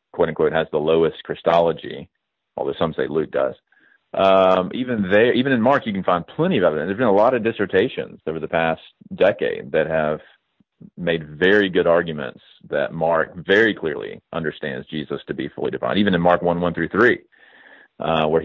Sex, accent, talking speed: male, American, 185 wpm